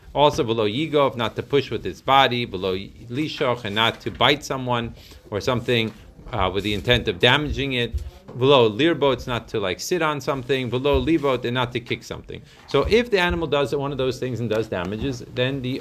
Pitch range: 120-150 Hz